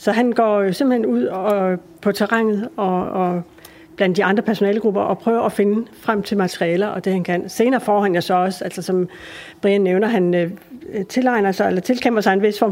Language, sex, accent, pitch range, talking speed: Danish, female, native, 190-230 Hz, 210 wpm